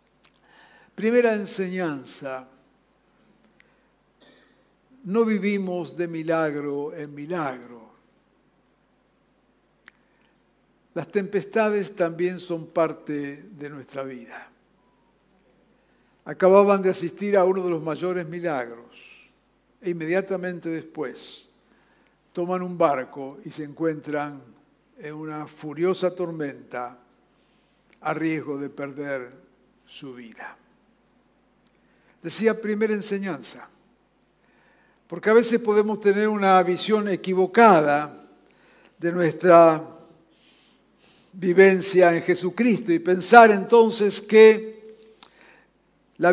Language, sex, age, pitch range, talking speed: Spanish, male, 60-79, 160-210 Hz, 85 wpm